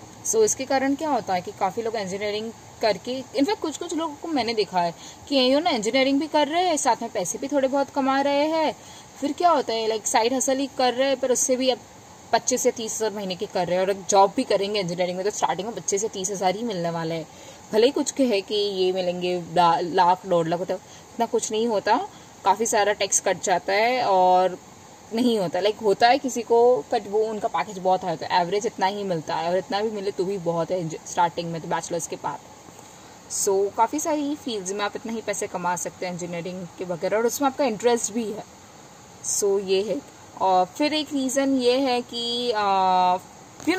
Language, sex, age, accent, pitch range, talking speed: Hindi, female, 20-39, native, 185-250 Hz, 225 wpm